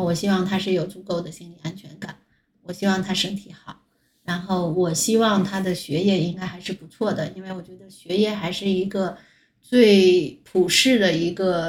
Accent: native